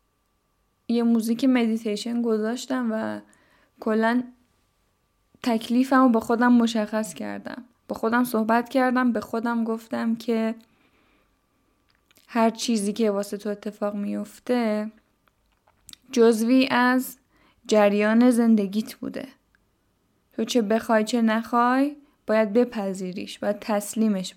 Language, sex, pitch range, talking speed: Persian, female, 215-250 Hz, 100 wpm